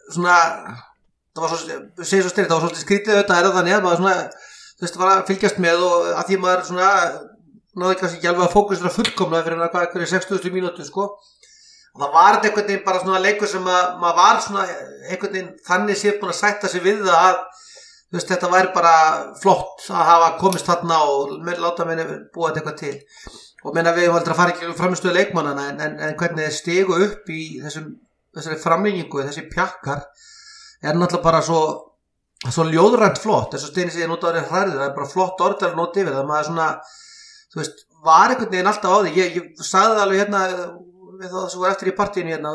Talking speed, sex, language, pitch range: 185 wpm, male, English, 165-195 Hz